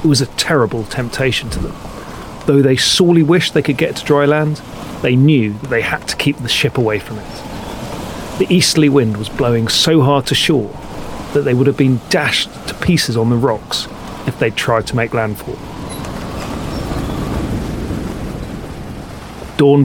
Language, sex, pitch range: English, male, 110-145 Hz